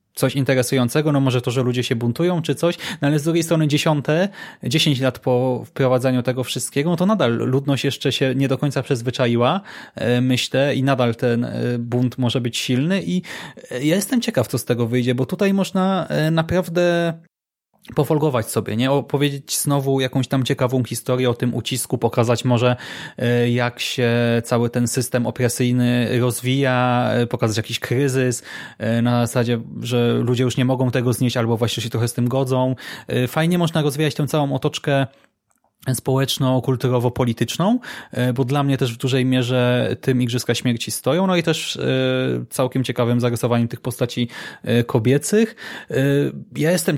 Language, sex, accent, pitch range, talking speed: Polish, male, native, 120-145 Hz, 155 wpm